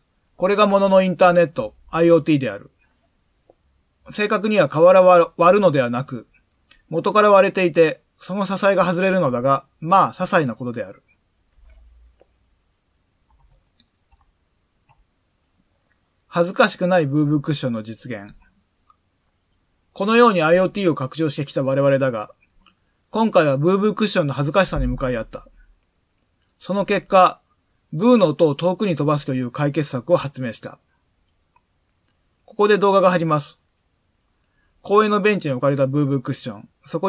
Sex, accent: male, native